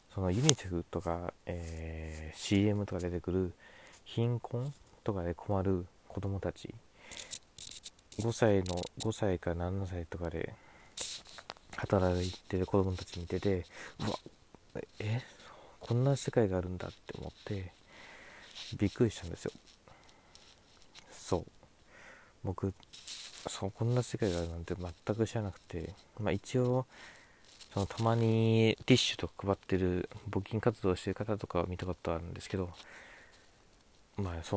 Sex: male